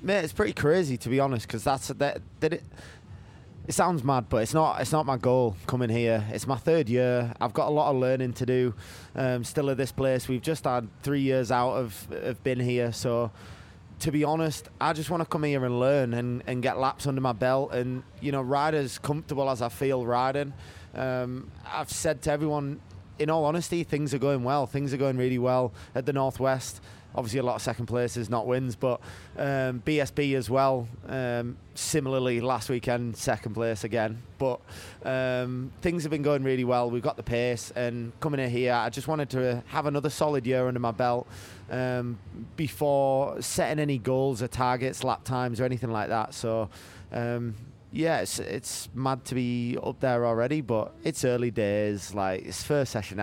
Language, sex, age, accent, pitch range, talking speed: English, male, 20-39, British, 120-135 Hz, 205 wpm